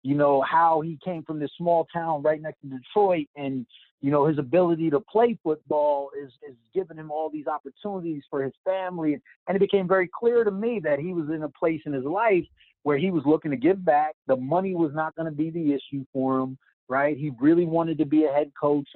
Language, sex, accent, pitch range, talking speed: English, male, American, 130-175 Hz, 235 wpm